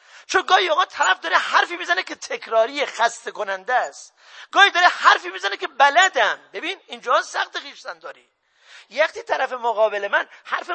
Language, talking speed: Persian, 150 wpm